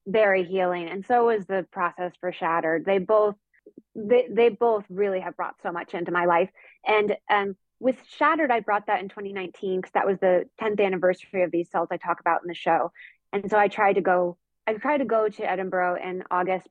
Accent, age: American, 20-39